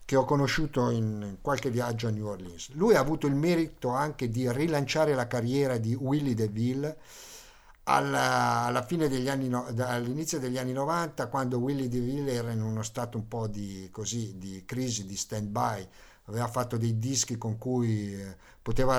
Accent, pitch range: native, 115-140 Hz